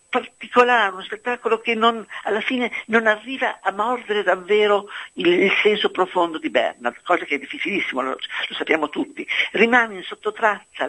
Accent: native